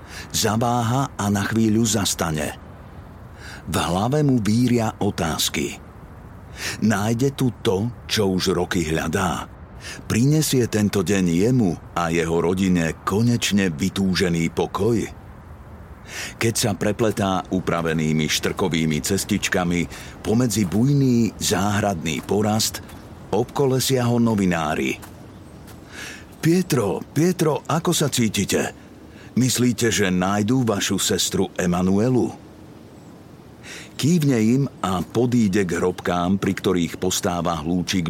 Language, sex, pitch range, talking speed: Slovak, male, 90-120 Hz, 95 wpm